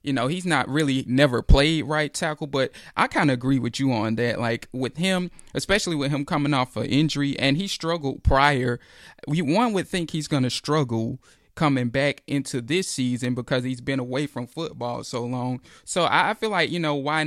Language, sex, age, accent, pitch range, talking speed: English, male, 20-39, American, 125-150 Hz, 205 wpm